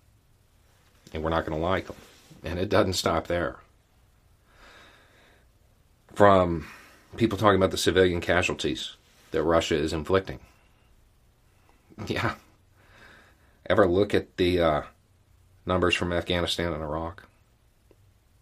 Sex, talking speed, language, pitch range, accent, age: male, 110 wpm, English, 85-105 Hz, American, 40-59